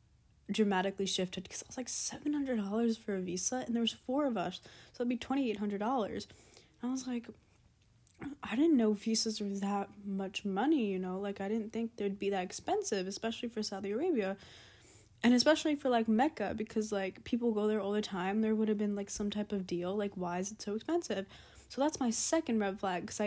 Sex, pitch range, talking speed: female, 200-240 Hz, 205 wpm